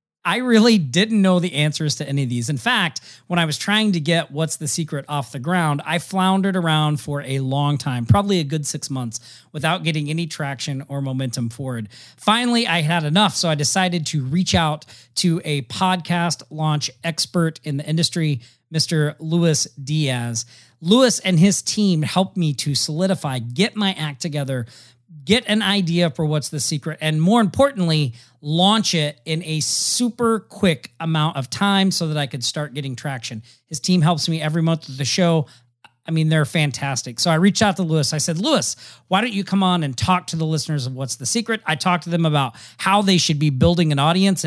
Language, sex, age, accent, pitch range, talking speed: English, male, 40-59, American, 140-180 Hz, 200 wpm